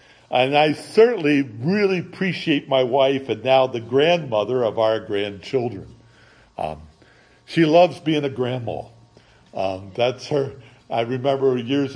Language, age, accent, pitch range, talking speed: English, 60-79, American, 110-140 Hz, 130 wpm